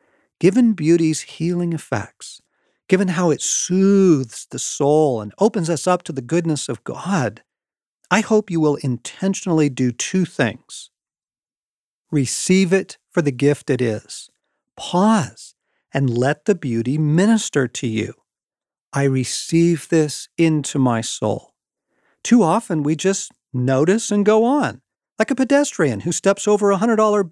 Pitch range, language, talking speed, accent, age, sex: 145-195 Hz, English, 140 wpm, American, 50-69, male